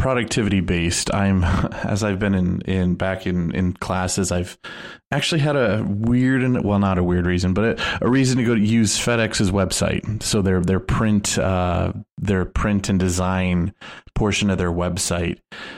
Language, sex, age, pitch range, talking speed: English, male, 30-49, 90-105 Hz, 175 wpm